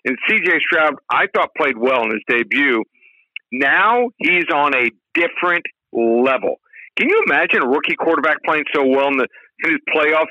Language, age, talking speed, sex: English, 50-69, 170 wpm, male